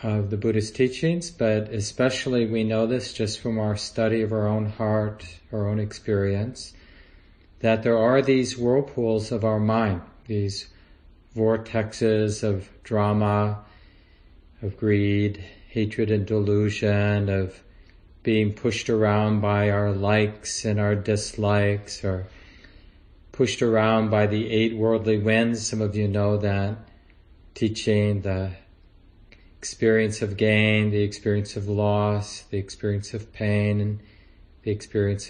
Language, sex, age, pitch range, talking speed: English, male, 40-59, 95-110 Hz, 130 wpm